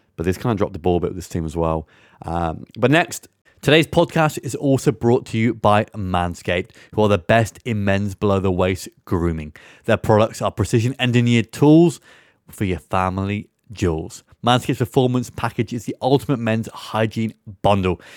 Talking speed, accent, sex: 170 wpm, British, male